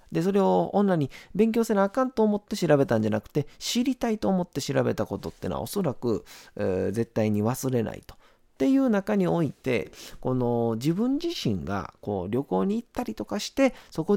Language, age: Japanese, 40-59